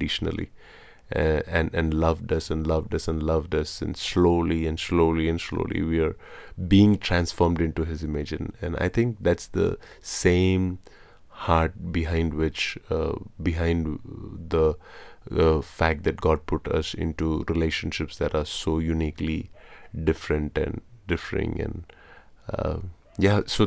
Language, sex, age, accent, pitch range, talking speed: English, male, 30-49, Indian, 80-95 Hz, 140 wpm